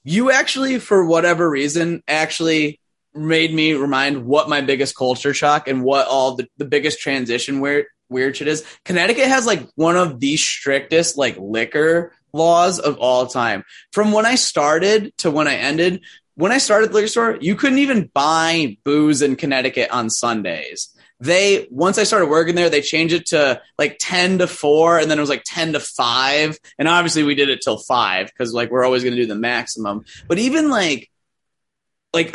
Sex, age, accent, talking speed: male, 20-39, American, 190 wpm